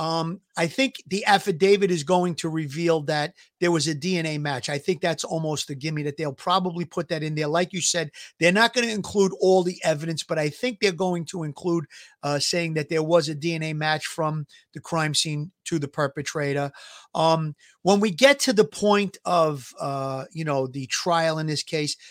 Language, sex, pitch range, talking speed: English, male, 155-200 Hz, 210 wpm